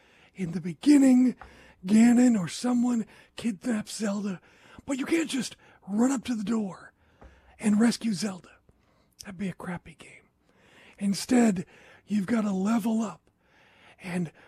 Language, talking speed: English, 135 wpm